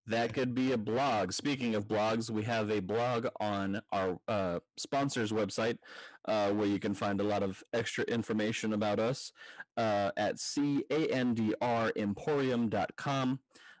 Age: 30-49